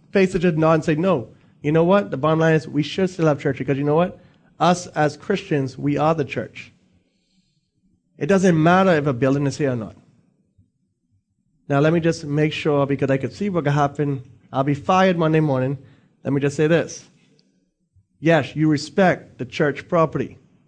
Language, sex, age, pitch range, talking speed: English, male, 30-49, 140-190 Hz, 200 wpm